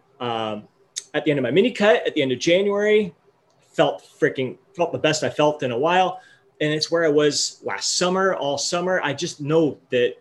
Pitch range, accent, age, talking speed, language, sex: 130-175 Hz, American, 30-49, 210 wpm, English, male